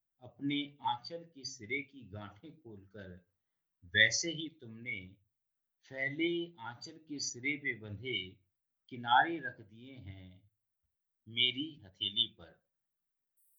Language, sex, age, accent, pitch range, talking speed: Hindi, male, 50-69, native, 105-155 Hz, 90 wpm